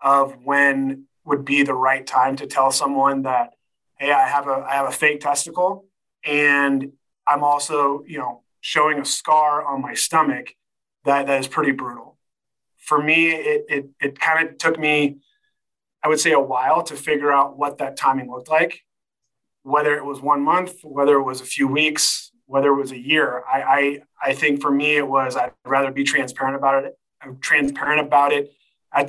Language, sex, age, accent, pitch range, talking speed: English, male, 30-49, American, 135-150 Hz, 190 wpm